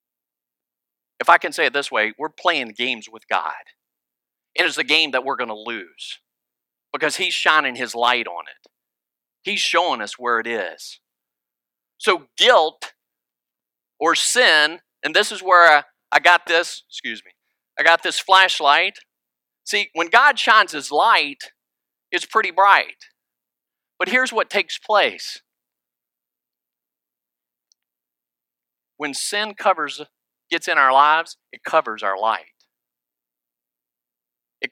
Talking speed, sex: 135 wpm, male